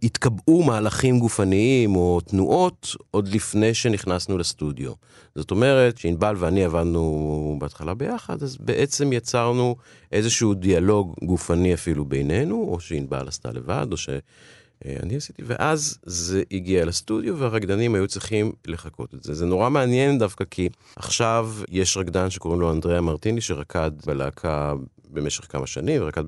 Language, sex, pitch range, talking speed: Hebrew, male, 85-115 Hz, 135 wpm